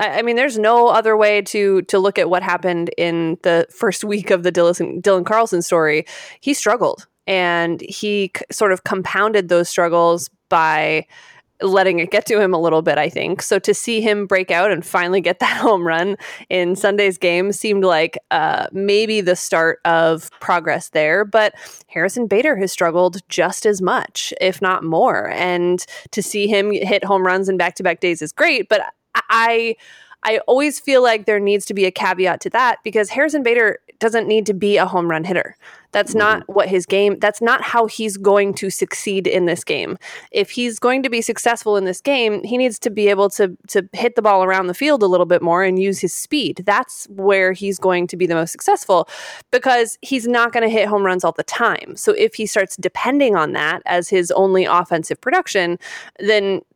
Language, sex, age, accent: English, female, 20-39, American